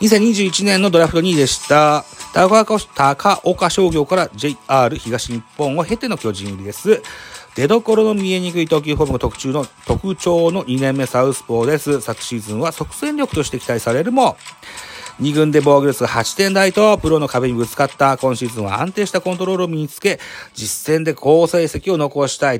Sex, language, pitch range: male, Japanese, 115-170 Hz